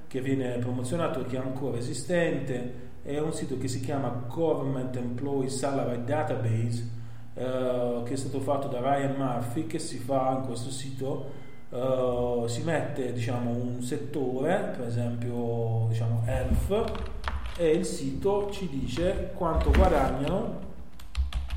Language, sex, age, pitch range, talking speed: Italian, male, 30-49, 115-140 Hz, 130 wpm